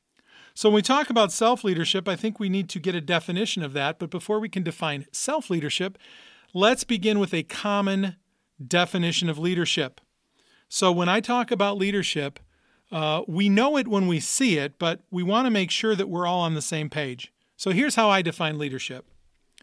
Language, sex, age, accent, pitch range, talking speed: English, male, 40-59, American, 160-210 Hz, 195 wpm